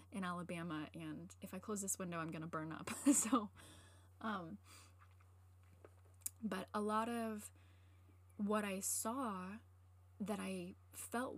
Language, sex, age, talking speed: English, female, 10-29, 125 wpm